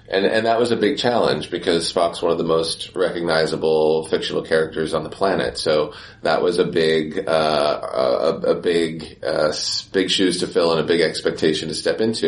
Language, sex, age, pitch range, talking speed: Portuguese, male, 30-49, 80-105 Hz, 195 wpm